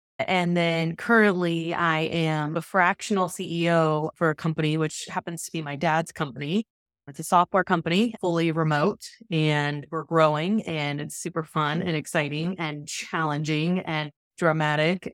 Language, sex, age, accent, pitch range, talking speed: English, female, 20-39, American, 150-180 Hz, 145 wpm